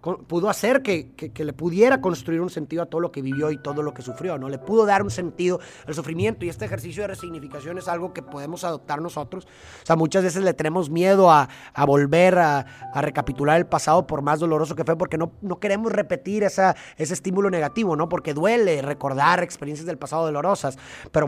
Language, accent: Spanish, Mexican